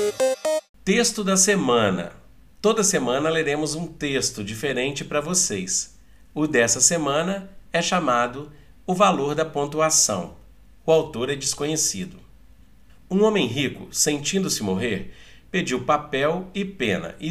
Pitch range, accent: 105-165 Hz, Brazilian